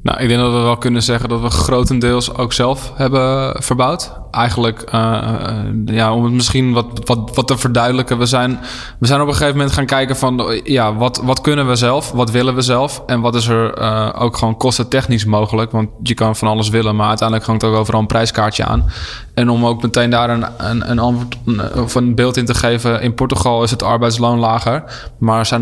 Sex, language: male, Dutch